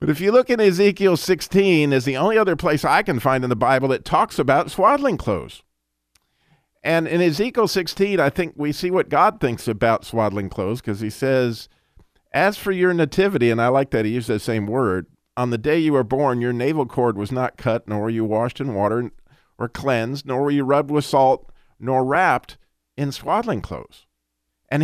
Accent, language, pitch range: American, English, 115-160 Hz